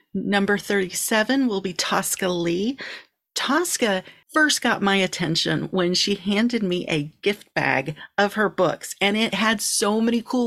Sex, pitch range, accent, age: female, 170-200 Hz, American, 40-59